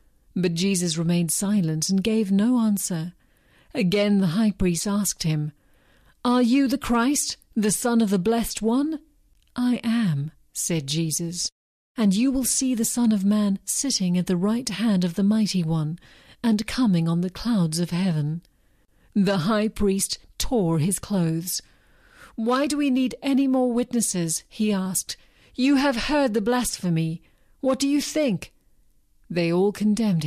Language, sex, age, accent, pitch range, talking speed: English, female, 50-69, British, 175-230 Hz, 155 wpm